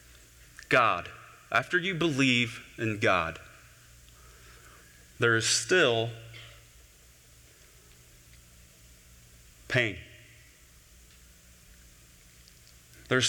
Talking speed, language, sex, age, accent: 50 wpm, English, male, 30-49, American